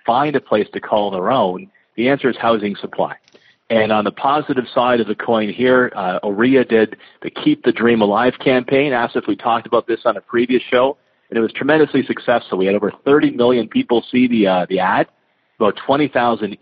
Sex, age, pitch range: male, 40-59, 115-145 Hz